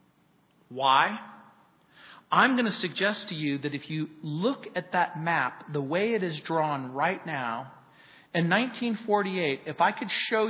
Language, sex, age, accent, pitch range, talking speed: English, male, 40-59, American, 150-200 Hz, 155 wpm